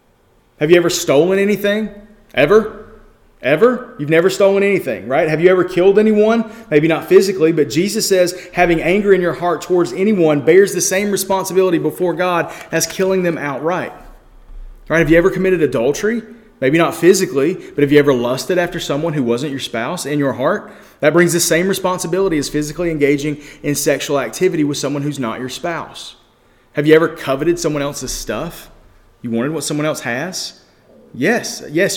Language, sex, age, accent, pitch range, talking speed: English, male, 30-49, American, 145-190 Hz, 175 wpm